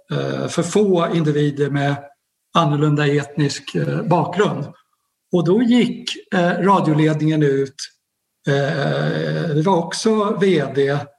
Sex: male